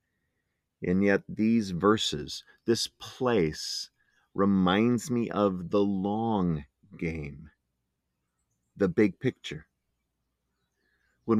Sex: male